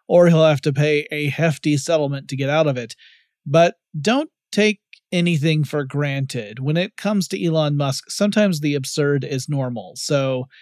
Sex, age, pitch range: male, 30-49, 145-175 Hz